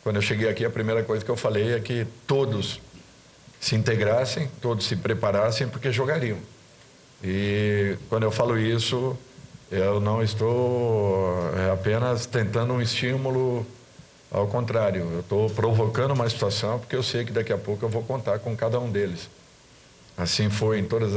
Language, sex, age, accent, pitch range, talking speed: Portuguese, male, 50-69, Brazilian, 95-115 Hz, 160 wpm